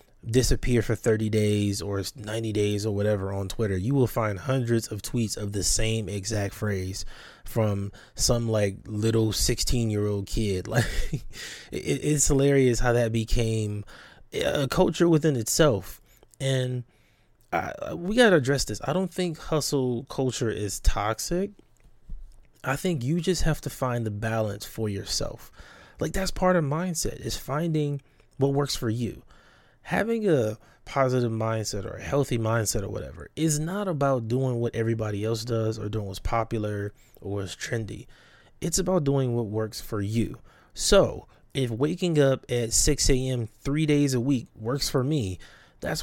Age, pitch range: 20-39, 105-140 Hz